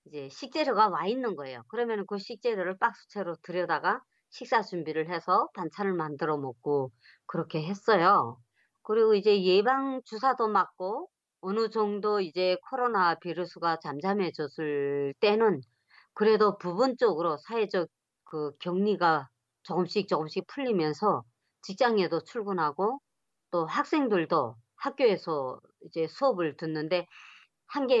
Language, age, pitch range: Korean, 40-59, 160-220 Hz